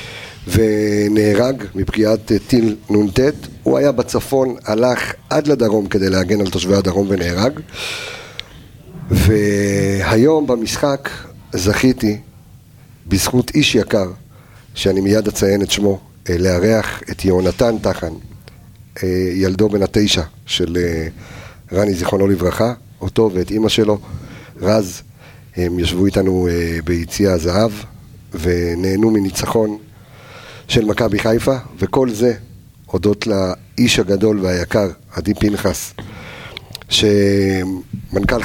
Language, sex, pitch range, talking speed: Hebrew, male, 95-120 Hz, 95 wpm